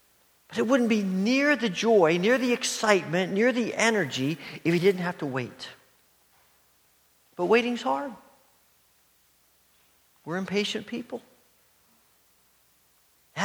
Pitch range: 130-195 Hz